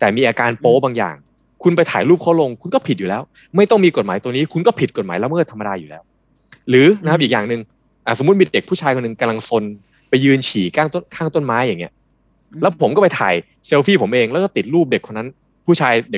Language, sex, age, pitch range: Thai, male, 20-39, 115-165 Hz